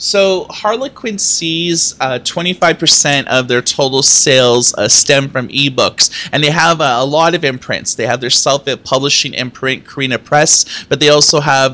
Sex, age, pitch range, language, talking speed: male, 30-49, 125-150 Hz, English, 165 wpm